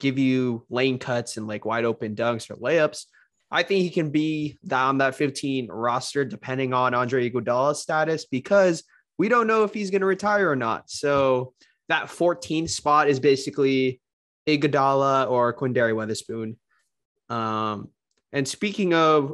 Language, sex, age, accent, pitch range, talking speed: English, male, 20-39, American, 125-160 Hz, 155 wpm